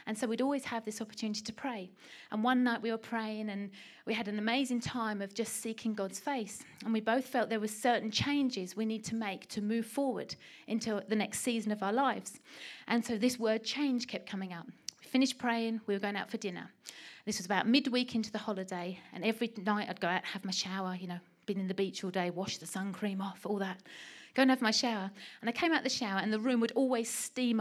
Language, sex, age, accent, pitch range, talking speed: English, female, 30-49, British, 210-265 Hz, 250 wpm